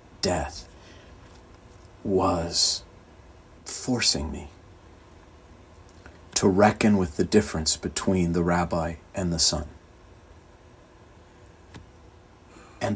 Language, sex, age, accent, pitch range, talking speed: English, male, 50-69, American, 85-105 Hz, 75 wpm